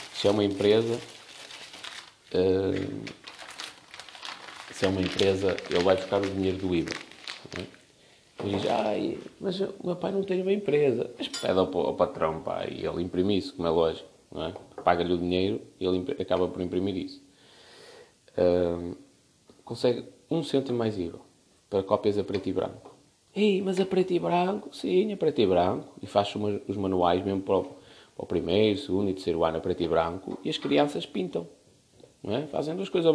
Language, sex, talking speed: Portuguese, male, 190 wpm